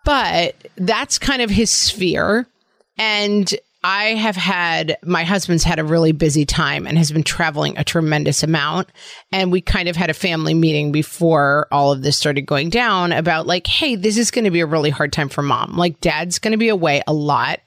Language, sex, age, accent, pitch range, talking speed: English, female, 30-49, American, 160-210 Hz, 205 wpm